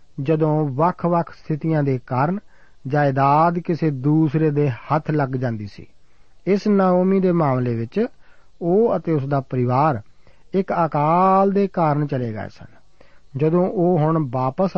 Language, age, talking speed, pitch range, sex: Punjabi, 50-69, 140 wpm, 130-170 Hz, male